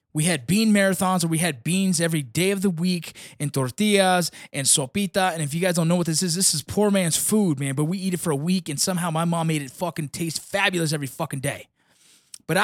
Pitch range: 170-230 Hz